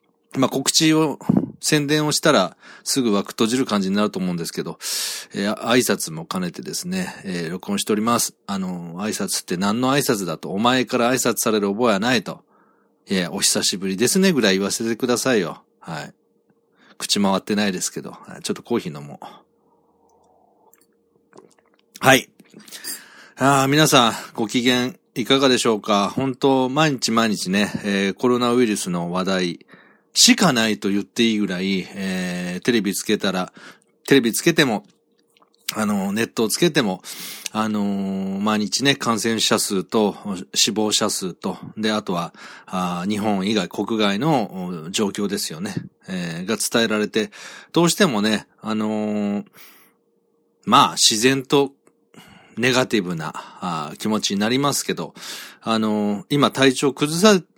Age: 40-59